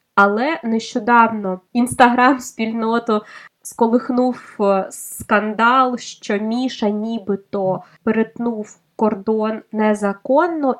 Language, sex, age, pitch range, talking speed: Ukrainian, female, 20-39, 210-250 Hz, 65 wpm